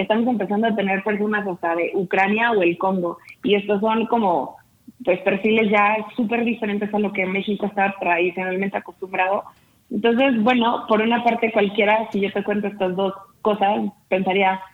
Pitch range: 190-215 Hz